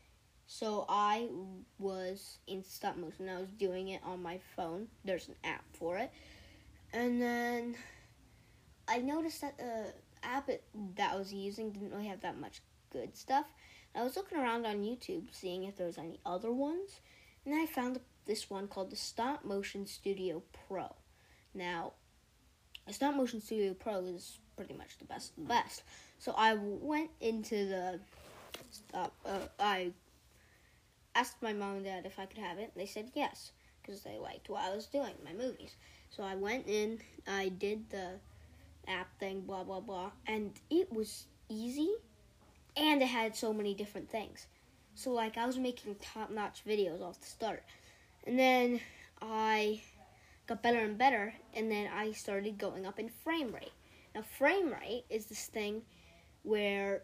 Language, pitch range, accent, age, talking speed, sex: English, 195-235 Hz, American, 10-29, 175 wpm, female